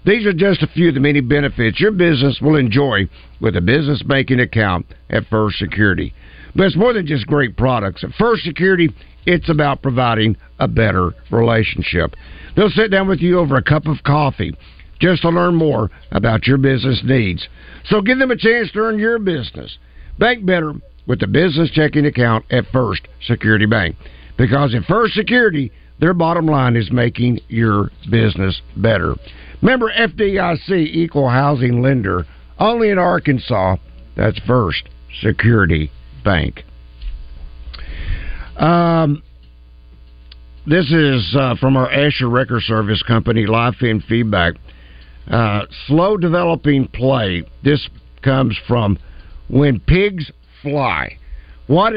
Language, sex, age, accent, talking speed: English, male, 50-69, American, 140 wpm